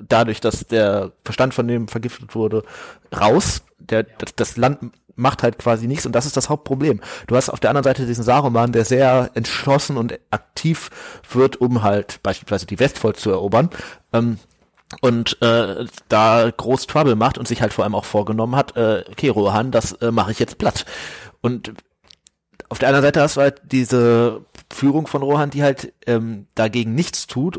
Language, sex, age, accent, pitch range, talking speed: German, male, 30-49, German, 115-140 Hz, 185 wpm